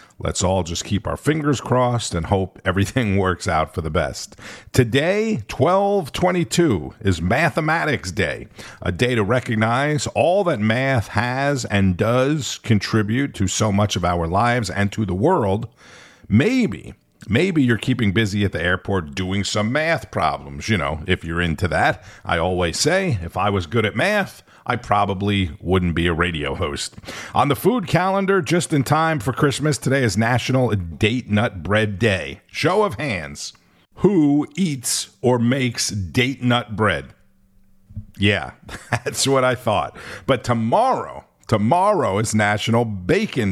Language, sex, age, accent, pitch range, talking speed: English, male, 50-69, American, 95-135 Hz, 155 wpm